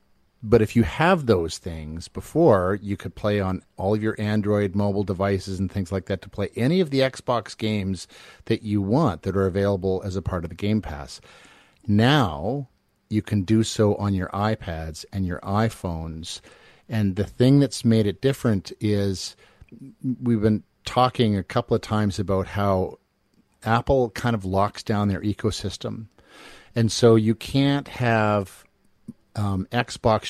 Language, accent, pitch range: English, American, 95-115 Hz